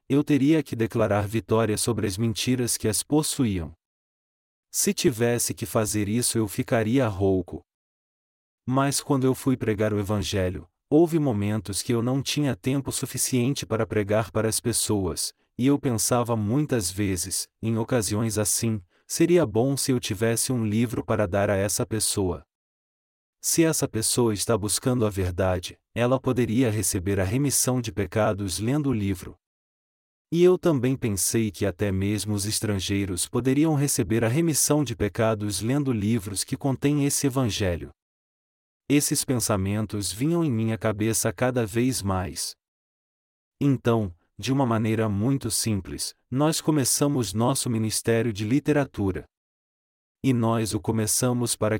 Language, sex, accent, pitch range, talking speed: Portuguese, male, Brazilian, 105-130 Hz, 140 wpm